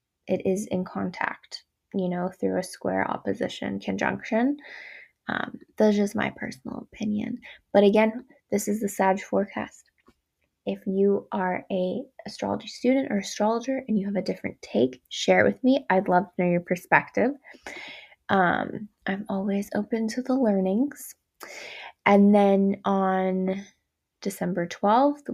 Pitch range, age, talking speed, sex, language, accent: 190-225 Hz, 20-39, 145 wpm, female, English, American